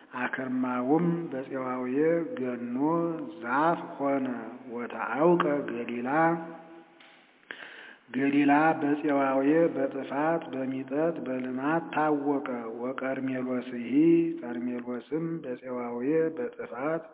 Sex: male